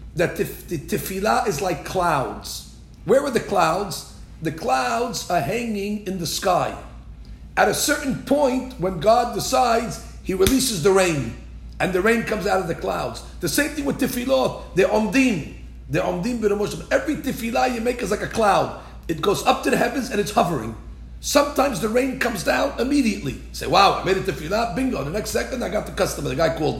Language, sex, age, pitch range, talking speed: English, male, 50-69, 180-250 Hz, 190 wpm